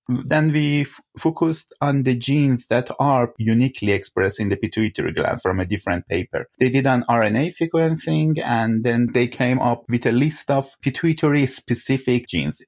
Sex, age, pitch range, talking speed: male, 30-49, 110-140 Hz, 165 wpm